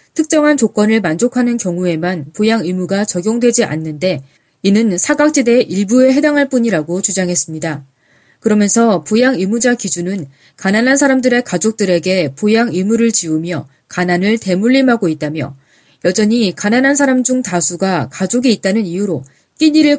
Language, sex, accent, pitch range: Korean, female, native, 175-245 Hz